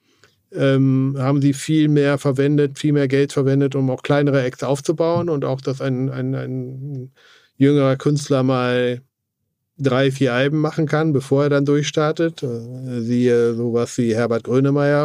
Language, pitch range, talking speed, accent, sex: German, 120-140 Hz, 150 wpm, German, male